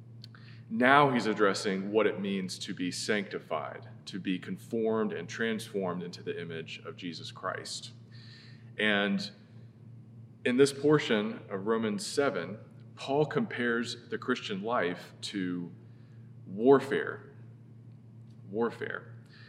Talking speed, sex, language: 110 wpm, male, English